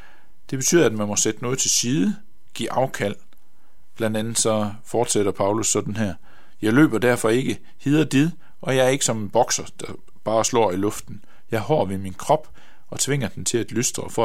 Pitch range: 105-130 Hz